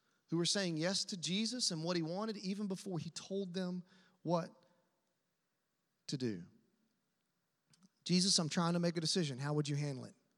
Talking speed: 175 wpm